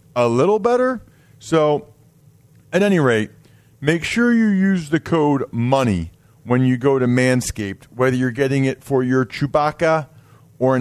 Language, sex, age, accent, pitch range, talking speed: English, male, 40-59, American, 110-145 Hz, 150 wpm